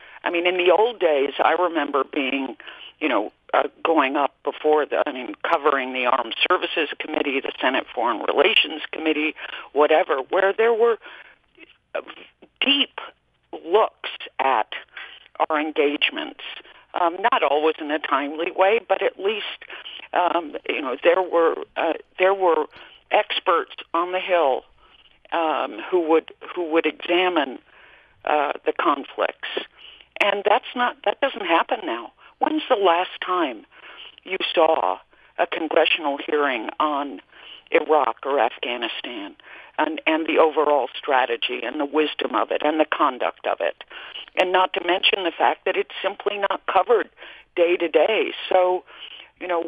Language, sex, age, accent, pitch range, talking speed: English, female, 50-69, American, 155-245 Hz, 145 wpm